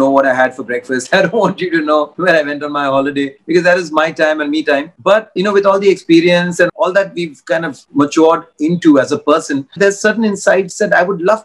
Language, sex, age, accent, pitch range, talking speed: English, male, 30-49, Indian, 150-195 Hz, 260 wpm